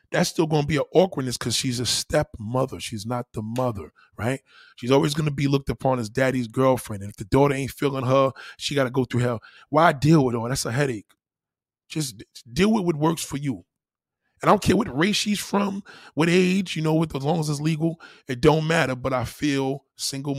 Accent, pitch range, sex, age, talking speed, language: American, 120-145 Hz, male, 20-39, 230 wpm, English